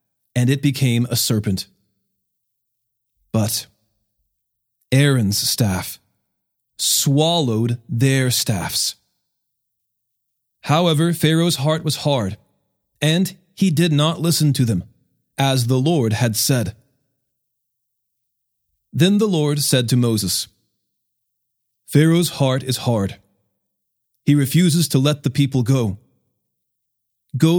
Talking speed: 100 wpm